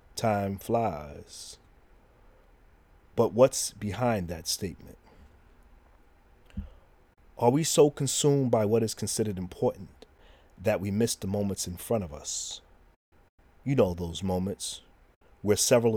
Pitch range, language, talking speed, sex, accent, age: 80-110 Hz, English, 115 wpm, male, American, 40-59